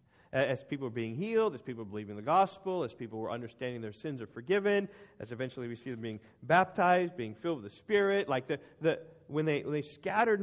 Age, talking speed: 40-59, 220 wpm